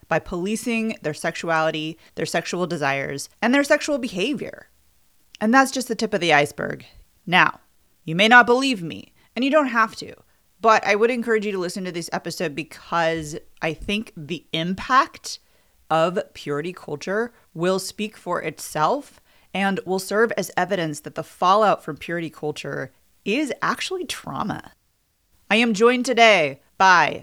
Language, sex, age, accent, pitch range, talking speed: English, female, 30-49, American, 155-205 Hz, 155 wpm